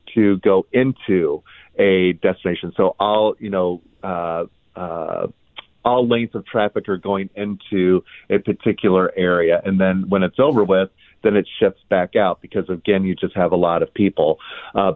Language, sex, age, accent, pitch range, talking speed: English, male, 40-59, American, 95-110 Hz, 170 wpm